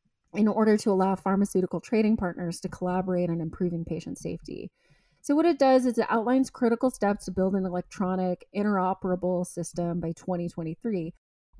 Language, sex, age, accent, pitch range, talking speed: English, female, 30-49, American, 170-205 Hz, 155 wpm